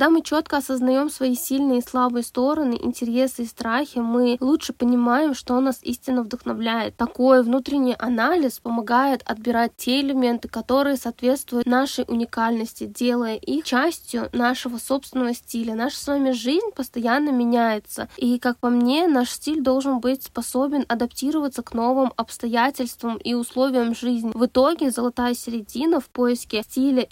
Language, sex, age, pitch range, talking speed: Russian, female, 20-39, 235-265 Hz, 145 wpm